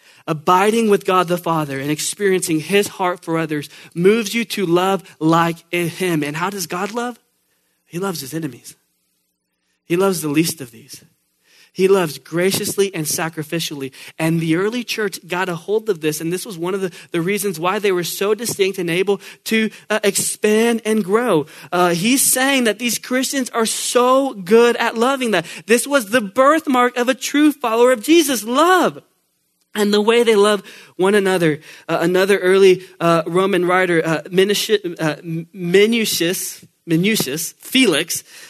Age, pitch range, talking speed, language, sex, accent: 20-39, 160-205 Hz, 170 wpm, English, male, American